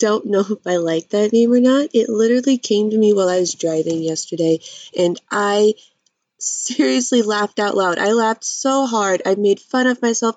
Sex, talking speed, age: female, 195 wpm, 20-39